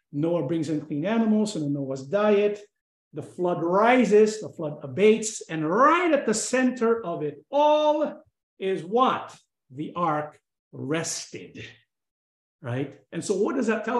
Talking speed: 150 wpm